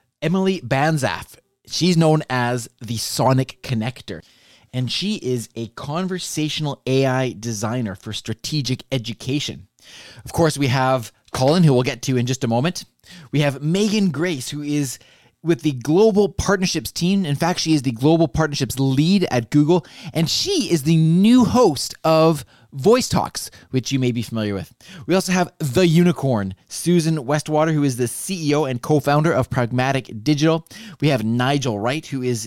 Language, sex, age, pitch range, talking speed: English, male, 20-39, 120-160 Hz, 165 wpm